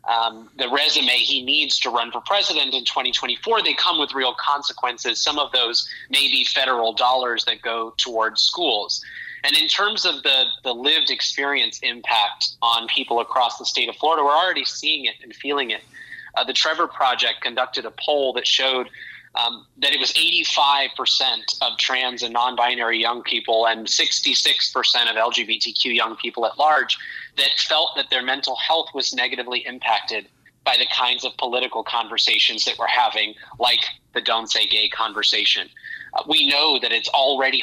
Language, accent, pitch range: English, American, 115-140 Hz